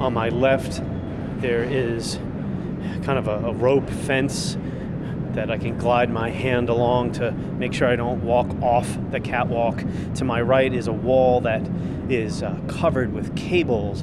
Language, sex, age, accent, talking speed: English, male, 30-49, American, 165 wpm